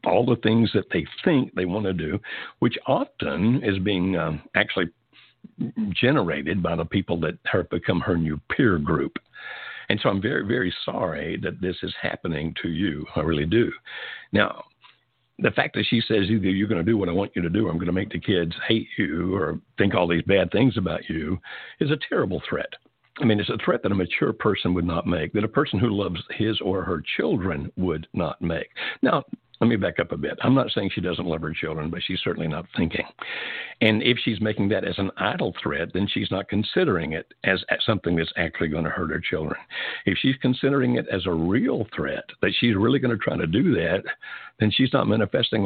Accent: American